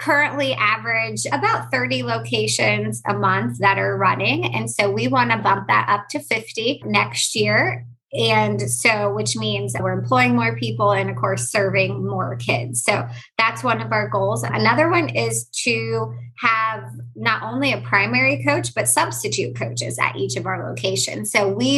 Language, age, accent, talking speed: English, 20-39, American, 175 wpm